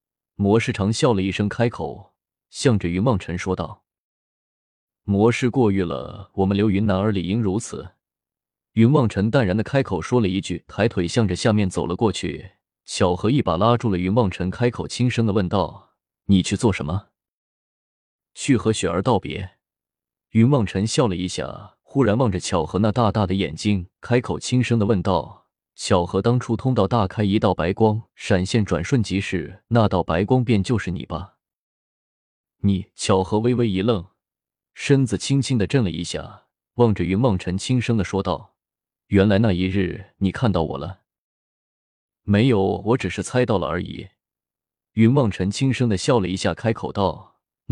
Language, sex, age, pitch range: Chinese, male, 20-39, 95-115 Hz